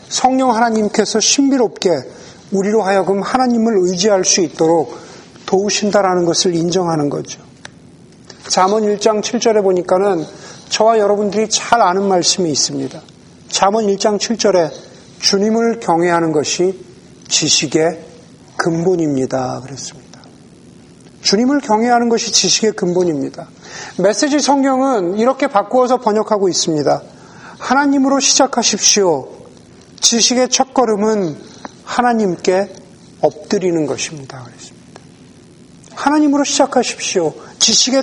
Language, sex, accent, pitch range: Korean, male, native, 190-260 Hz